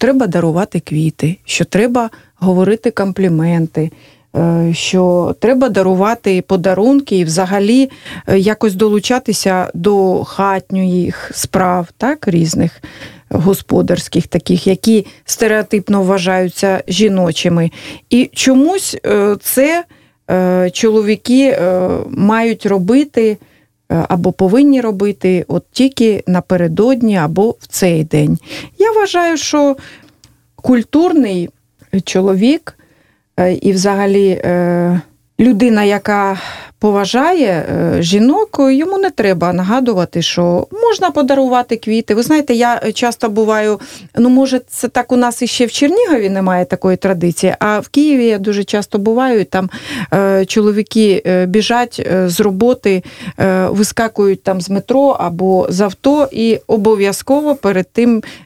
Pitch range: 185-245 Hz